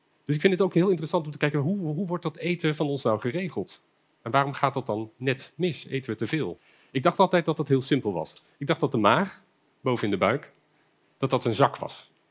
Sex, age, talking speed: male, 40-59, 255 wpm